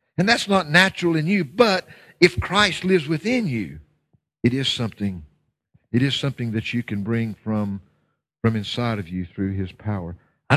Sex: male